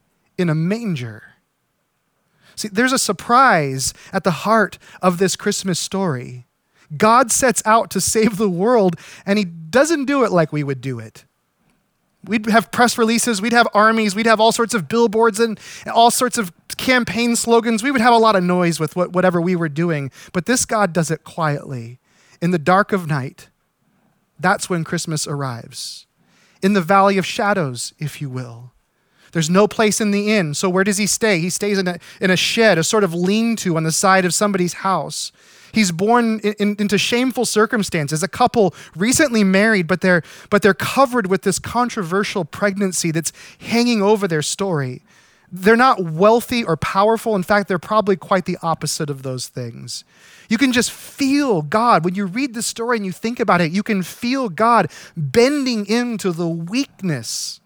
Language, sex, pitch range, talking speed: English, male, 170-225 Hz, 185 wpm